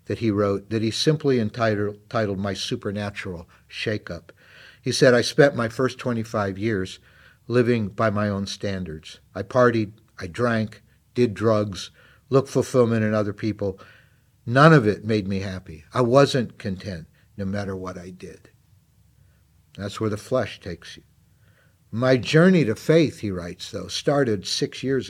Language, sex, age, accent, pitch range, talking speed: English, male, 50-69, American, 105-130 Hz, 155 wpm